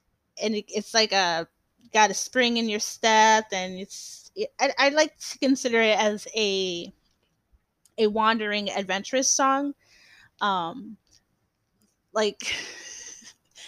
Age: 10-29